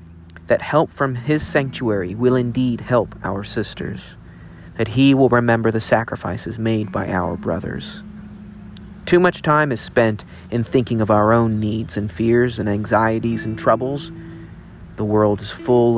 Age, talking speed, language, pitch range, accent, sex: 40-59, 155 wpm, English, 105-120 Hz, American, male